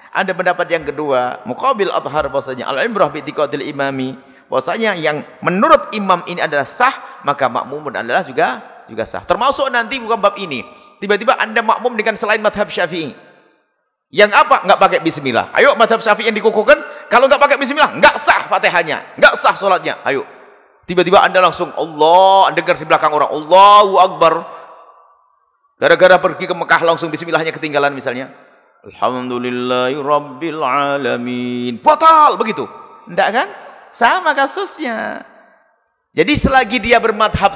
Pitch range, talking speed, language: 165-250 Hz, 135 wpm, Indonesian